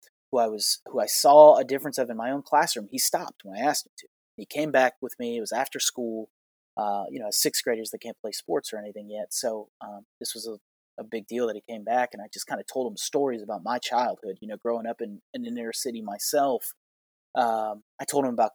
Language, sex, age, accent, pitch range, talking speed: English, male, 30-49, American, 110-140 Hz, 255 wpm